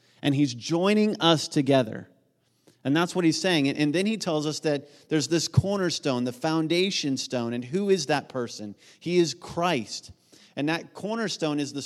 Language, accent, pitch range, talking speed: English, American, 125-165 Hz, 175 wpm